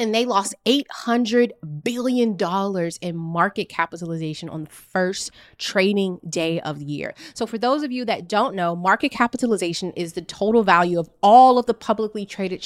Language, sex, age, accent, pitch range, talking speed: English, female, 20-39, American, 175-240 Hz, 170 wpm